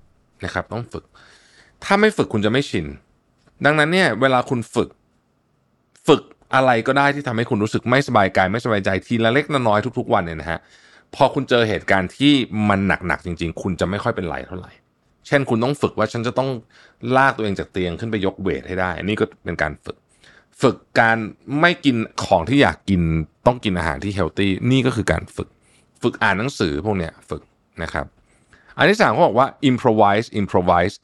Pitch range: 95-130 Hz